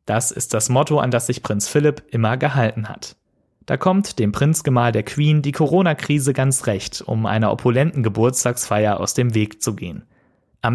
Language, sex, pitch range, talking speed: German, male, 110-140 Hz, 180 wpm